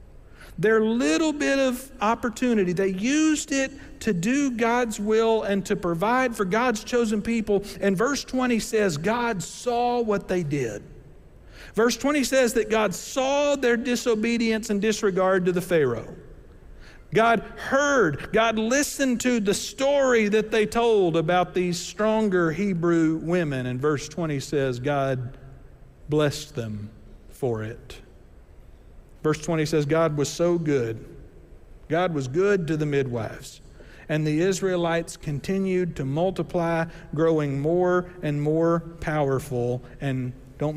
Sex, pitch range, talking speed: male, 140-220 Hz, 135 wpm